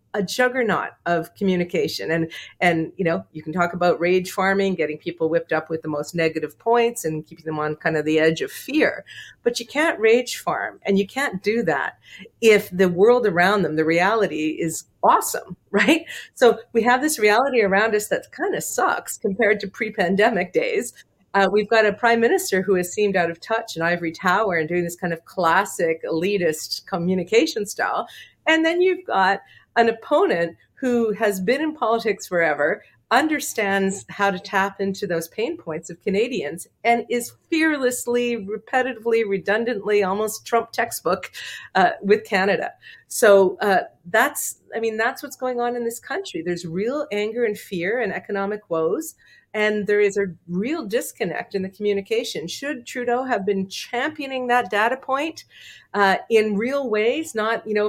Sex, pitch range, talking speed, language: female, 185-240 Hz, 175 wpm, English